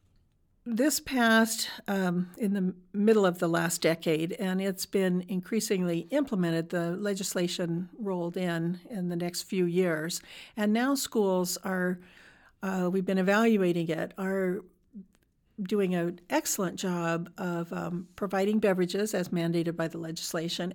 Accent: American